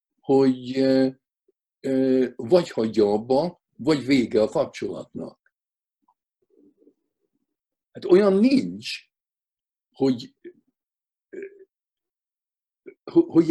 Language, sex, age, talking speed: Hungarian, male, 60-79, 60 wpm